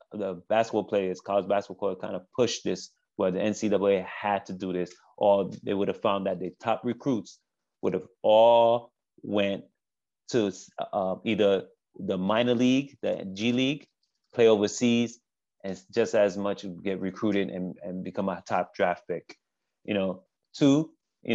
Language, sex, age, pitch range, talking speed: English, male, 30-49, 100-125 Hz, 165 wpm